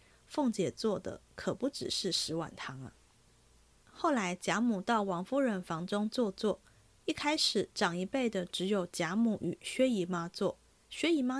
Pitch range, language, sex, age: 180-240 Hz, Chinese, female, 20-39